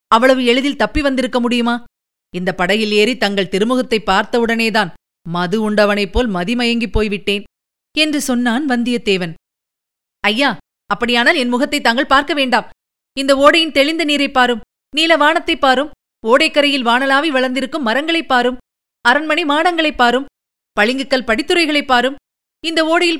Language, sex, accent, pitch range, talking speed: Tamil, female, native, 220-285 Hz, 120 wpm